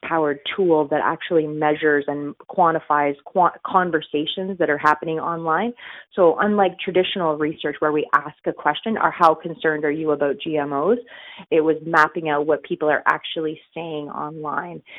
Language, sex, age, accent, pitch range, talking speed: English, female, 30-49, American, 150-185 Hz, 155 wpm